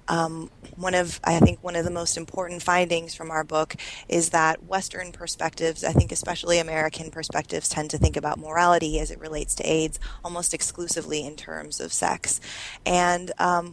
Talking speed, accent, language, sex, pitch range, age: 180 wpm, American, English, female, 155-175 Hz, 20-39